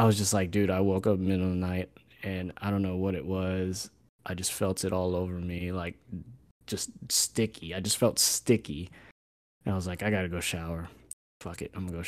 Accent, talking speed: American, 250 wpm